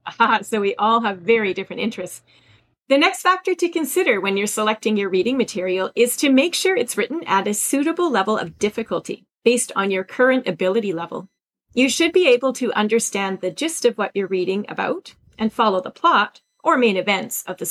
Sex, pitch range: female, 195-270 Hz